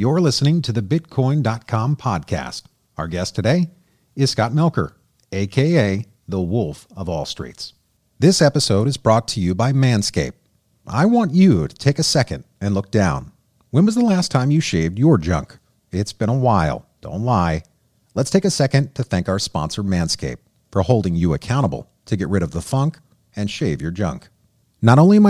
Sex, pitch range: male, 95-140 Hz